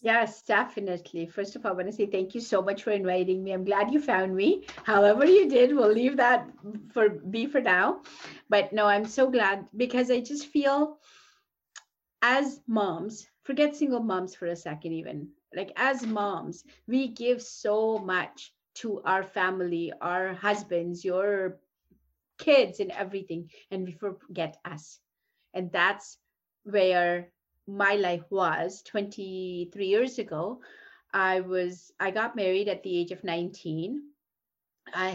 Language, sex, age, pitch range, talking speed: English, female, 30-49, 180-240 Hz, 150 wpm